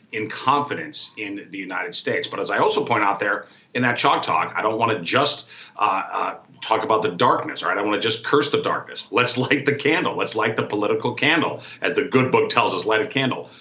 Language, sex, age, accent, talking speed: English, male, 40-59, American, 240 wpm